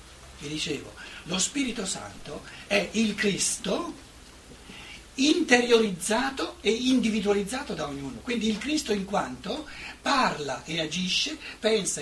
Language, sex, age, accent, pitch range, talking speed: Italian, male, 60-79, native, 185-230 Hz, 110 wpm